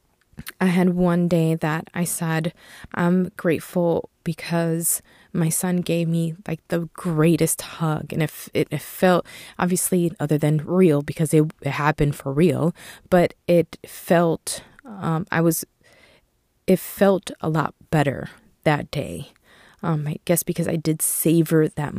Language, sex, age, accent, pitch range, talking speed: English, female, 20-39, American, 160-185 Hz, 145 wpm